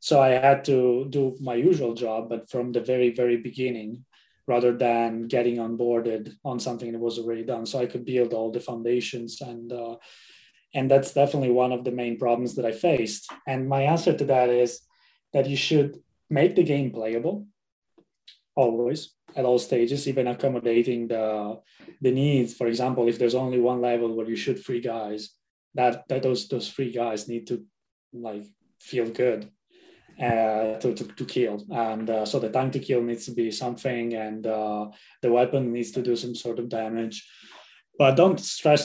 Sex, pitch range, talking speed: male, 115-130 Hz, 185 wpm